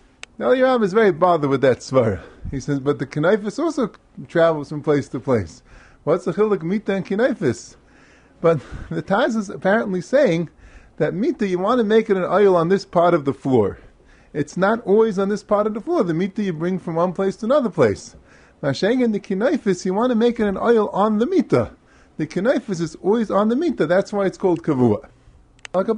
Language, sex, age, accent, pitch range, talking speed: English, male, 30-49, American, 150-205 Hz, 215 wpm